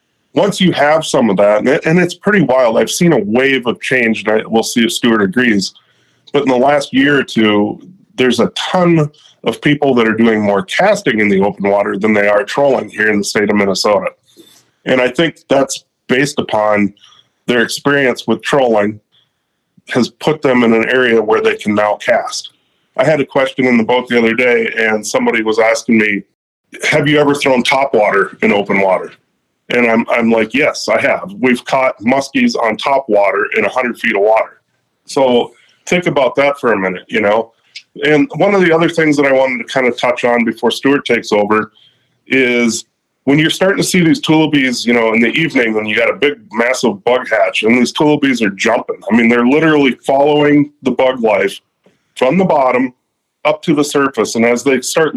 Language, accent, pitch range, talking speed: English, American, 110-145 Hz, 205 wpm